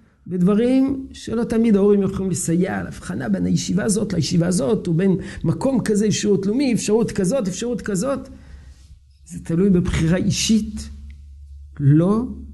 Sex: male